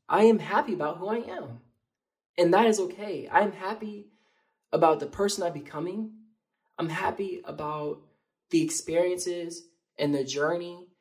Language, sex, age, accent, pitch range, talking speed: English, male, 20-39, American, 145-205 Hz, 140 wpm